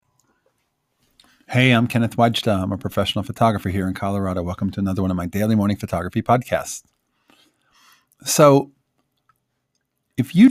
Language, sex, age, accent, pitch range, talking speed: English, male, 40-59, American, 100-130 Hz, 135 wpm